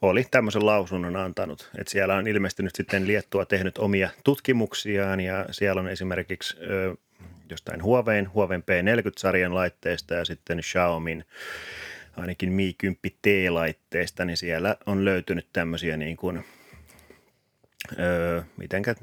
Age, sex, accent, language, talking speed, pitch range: 30-49, male, native, Finnish, 125 wpm, 85-100 Hz